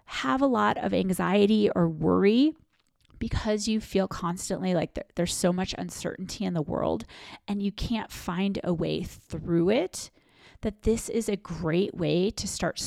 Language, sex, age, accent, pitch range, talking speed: English, female, 30-49, American, 180-225 Hz, 165 wpm